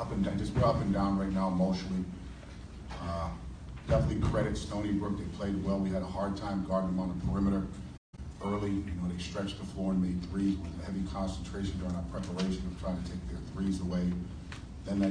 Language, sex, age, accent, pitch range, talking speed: English, male, 40-59, American, 90-100 Hz, 210 wpm